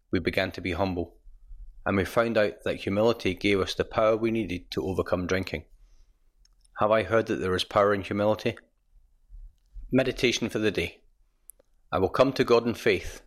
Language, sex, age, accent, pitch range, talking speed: English, male, 30-49, British, 90-110 Hz, 180 wpm